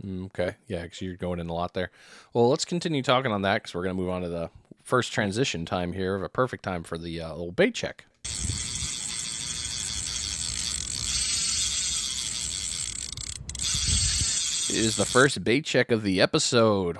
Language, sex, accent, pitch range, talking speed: English, male, American, 95-120 Hz, 160 wpm